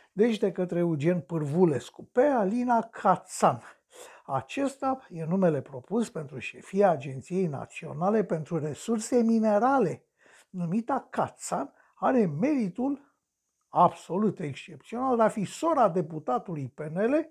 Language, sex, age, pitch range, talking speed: Romanian, male, 60-79, 155-225 Hz, 105 wpm